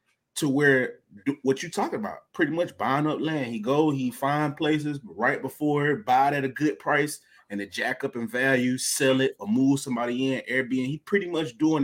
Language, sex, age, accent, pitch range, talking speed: English, male, 20-39, American, 130-160 Hz, 210 wpm